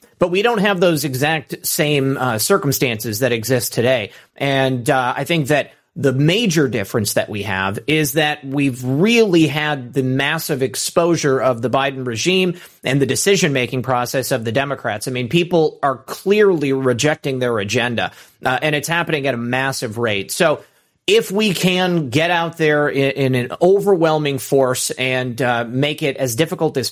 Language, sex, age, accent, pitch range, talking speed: English, male, 30-49, American, 125-165 Hz, 175 wpm